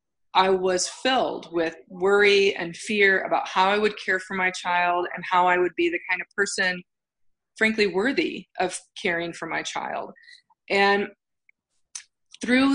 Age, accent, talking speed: 30-49, American, 155 wpm